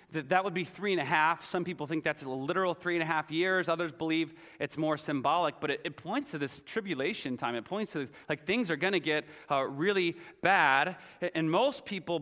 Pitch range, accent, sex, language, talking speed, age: 155-185 Hz, American, male, English, 220 wpm, 30-49